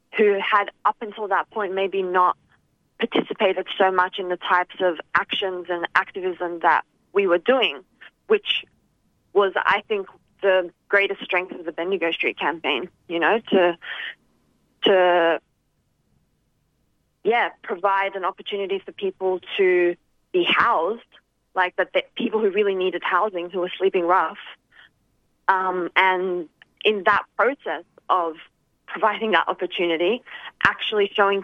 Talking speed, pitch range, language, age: 130 wpm, 175-205 Hz, English, 20-39